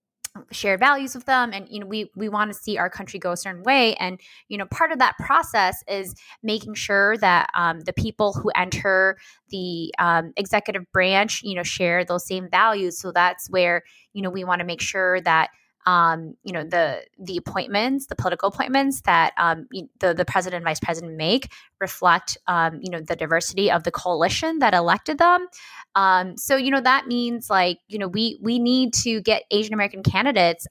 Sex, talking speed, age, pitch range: female, 200 wpm, 20-39, 180-235 Hz